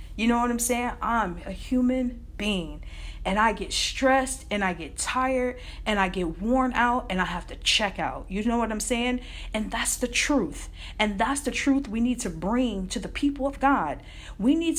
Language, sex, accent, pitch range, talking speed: English, female, American, 185-250 Hz, 210 wpm